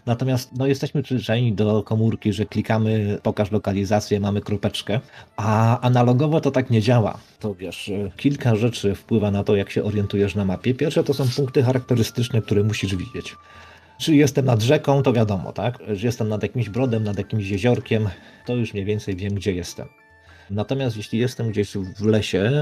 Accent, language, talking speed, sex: native, Polish, 175 wpm, male